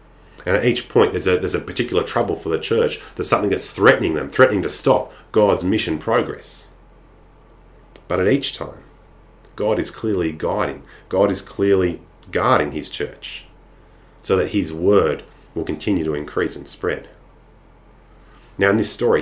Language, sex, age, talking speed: English, male, 30-49, 160 wpm